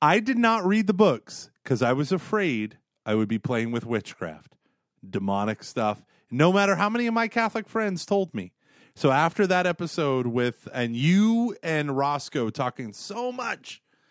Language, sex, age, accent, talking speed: English, male, 30-49, American, 170 wpm